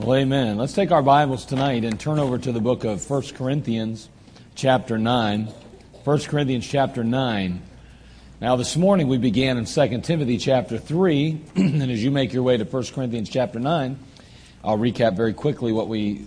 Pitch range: 115-145 Hz